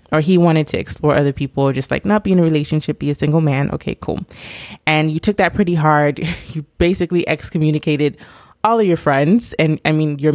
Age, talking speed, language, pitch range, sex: 20-39, 220 wpm, English, 145-175 Hz, female